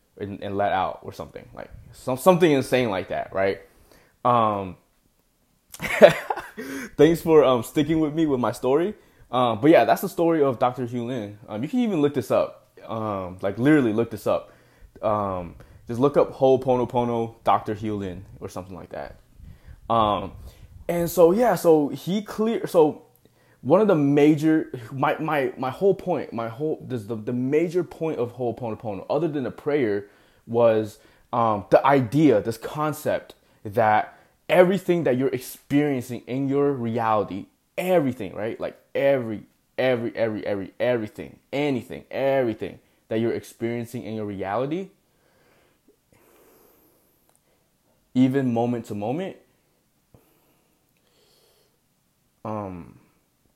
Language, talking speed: English, 140 wpm